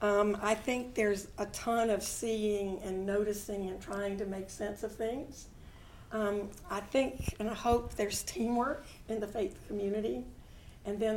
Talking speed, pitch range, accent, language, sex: 165 wpm, 200-230 Hz, American, English, female